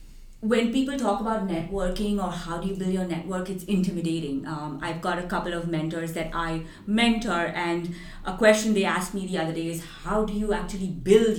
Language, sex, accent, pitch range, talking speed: English, female, Indian, 170-215 Hz, 205 wpm